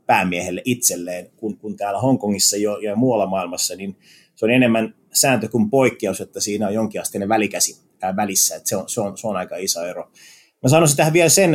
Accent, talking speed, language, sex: native, 195 wpm, Finnish, male